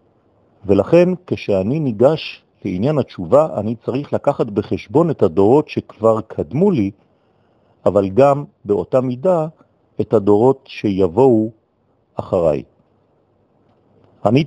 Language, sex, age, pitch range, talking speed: French, male, 50-69, 100-130 Hz, 95 wpm